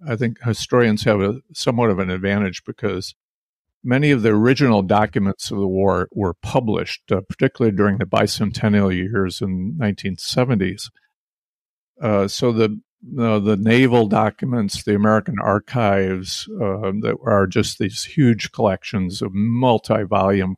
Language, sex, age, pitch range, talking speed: English, male, 50-69, 95-115 Hz, 140 wpm